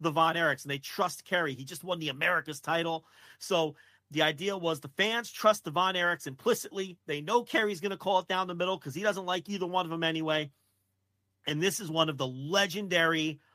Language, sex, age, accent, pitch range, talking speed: English, male, 40-59, American, 125-165 Hz, 210 wpm